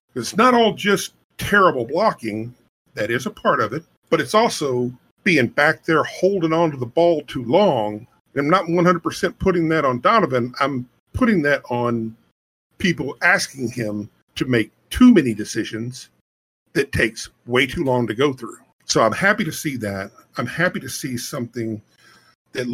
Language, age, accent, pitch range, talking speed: English, 50-69, American, 120-175 Hz, 170 wpm